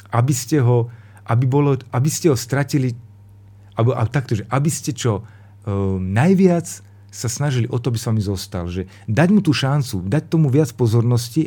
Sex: male